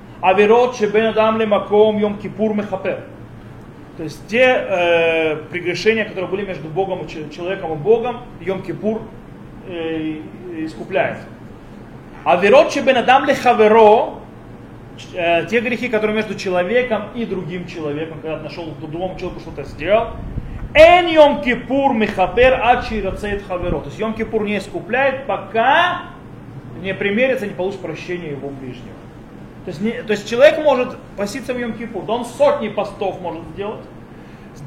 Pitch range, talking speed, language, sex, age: 165-225 Hz, 125 wpm, Russian, male, 30-49